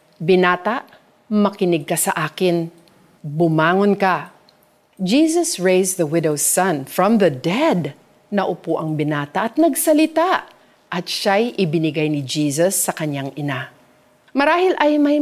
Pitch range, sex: 165-240 Hz, female